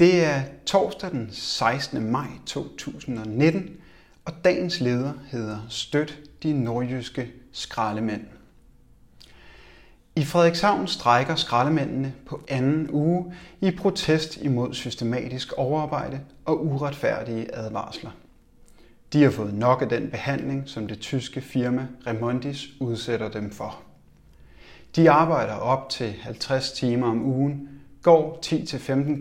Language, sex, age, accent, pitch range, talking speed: Danish, male, 30-49, native, 115-145 Hz, 115 wpm